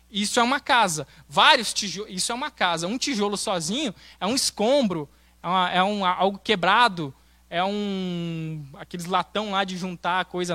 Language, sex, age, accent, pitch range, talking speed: Portuguese, male, 20-39, Brazilian, 170-230 Hz, 175 wpm